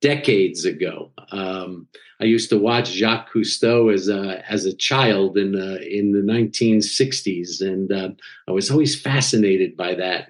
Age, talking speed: 50-69, 165 wpm